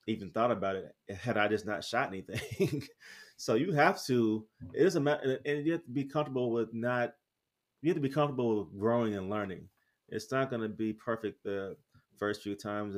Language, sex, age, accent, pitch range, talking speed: English, male, 30-49, American, 100-125 Hz, 205 wpm